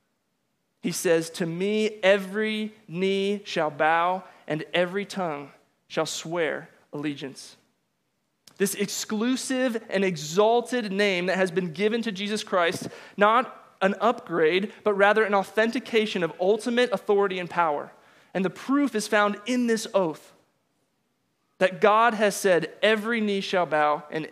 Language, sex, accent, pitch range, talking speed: English, male, American, 165-205 Hz, 135 wpm